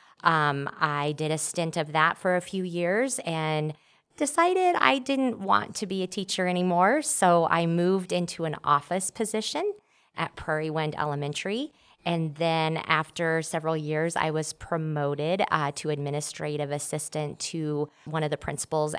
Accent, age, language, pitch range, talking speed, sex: American, 30-49, English, 150-180 Hz, 155 wpm, female